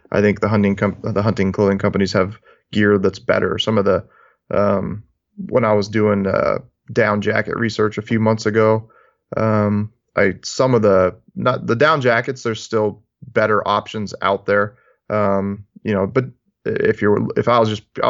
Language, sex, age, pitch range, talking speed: English, male, 20-39, 100-110 Hz, 180 wpm